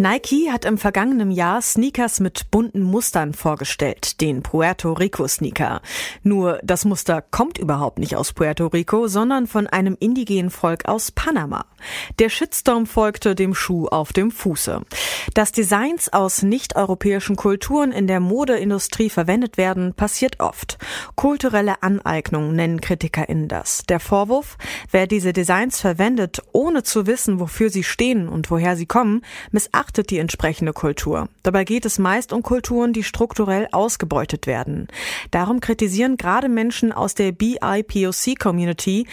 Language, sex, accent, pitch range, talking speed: German, female, German, 180-230 Hz, 140 wpm